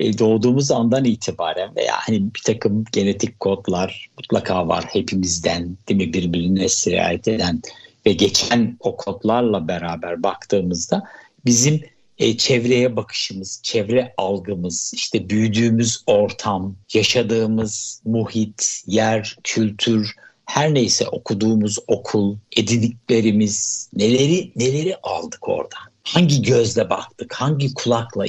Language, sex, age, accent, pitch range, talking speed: Turkish, male, 60-79, native, 105-130 Hz, 105 wpm